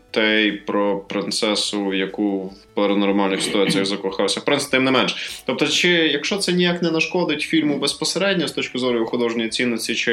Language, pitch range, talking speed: Ukrainian, 110-165 Hz, 160 wpm